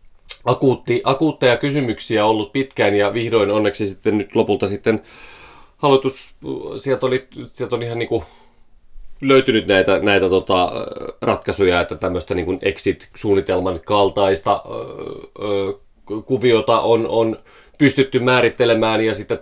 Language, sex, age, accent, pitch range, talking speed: Finnish, male, 30-49, native, 95-115 Hz, 120 wpm